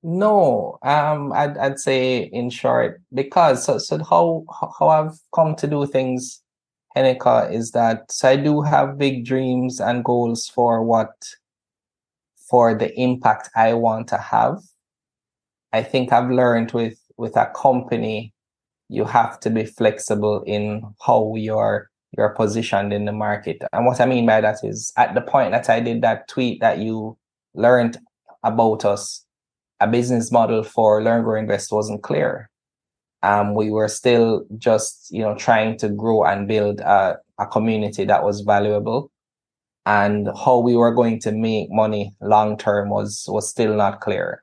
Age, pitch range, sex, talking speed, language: 20-39, 105-120 Hz, male, 165 wpm, English